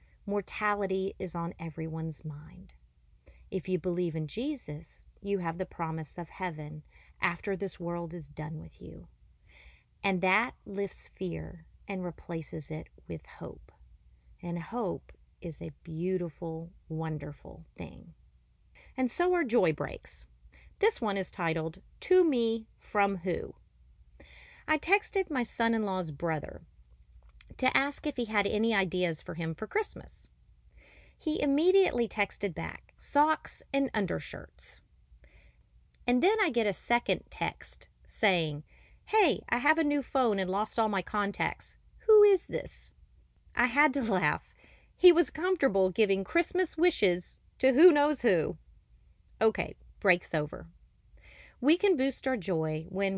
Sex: female